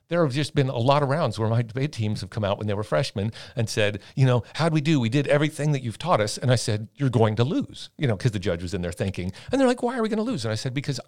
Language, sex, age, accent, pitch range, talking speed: English, male, 50-69, American, 105-140 Hz, 335 wpm